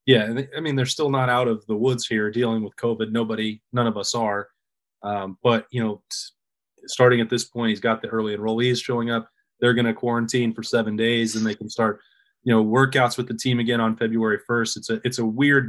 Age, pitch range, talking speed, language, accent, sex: 20-39, 115-125 Hz, 235 wpm, English, American, male